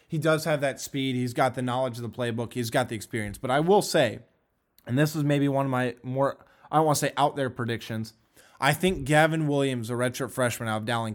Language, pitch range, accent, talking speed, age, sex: English, 120-145 Hz, American, 240 wpm, 20-39, male